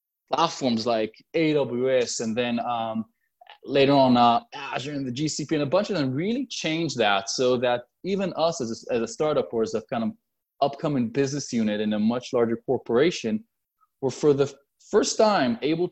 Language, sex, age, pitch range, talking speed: English, male, 20-39, 125-170 Hz, 185 wpm